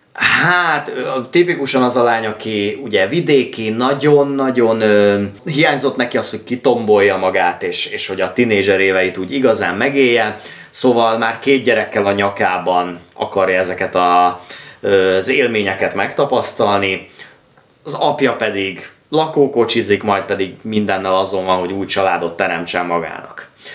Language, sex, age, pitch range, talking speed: Hungarian, male, 20-39, 95-130 Hz, 125 wpm